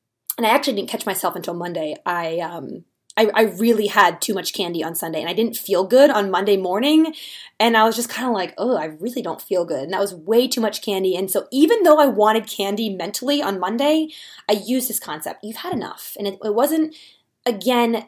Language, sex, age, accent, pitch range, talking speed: English, female, 20-39, American, 200-260 Hz, 230 wpm